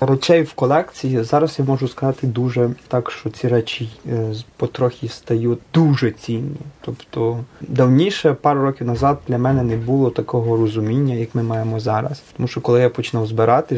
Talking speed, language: 160 wpm, Ukrainian